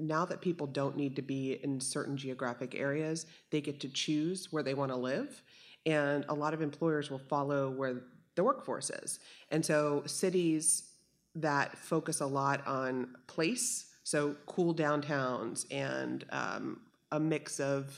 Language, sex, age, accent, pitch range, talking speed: English, female, 30-49, American, 135-160 Hz, 160 wpm